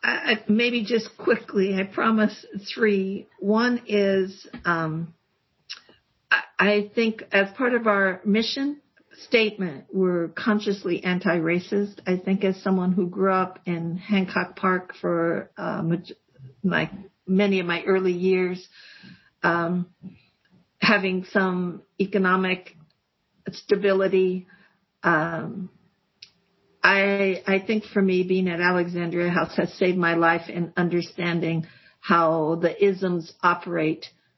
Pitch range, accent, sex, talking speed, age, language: 170-195 Hz, American, female, 115 wpm, 50-69, English